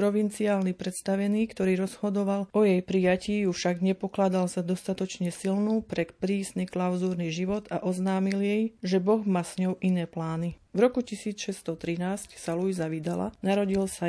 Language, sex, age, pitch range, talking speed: Slovak, female, 40-59, 175-200 Hz, 150 wpm